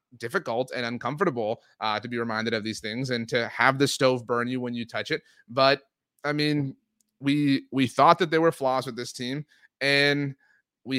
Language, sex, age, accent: English, male, 30-49, American